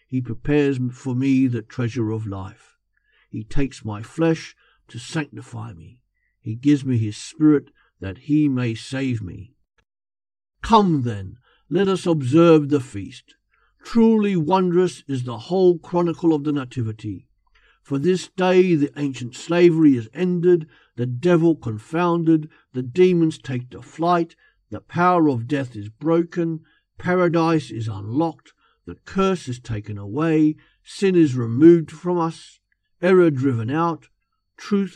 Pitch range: 120-165 Hz